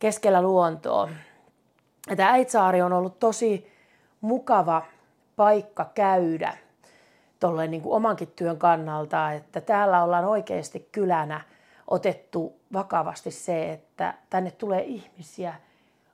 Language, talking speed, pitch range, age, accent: Finnish, 100 wpm, 160-200 Hz, 30-49, native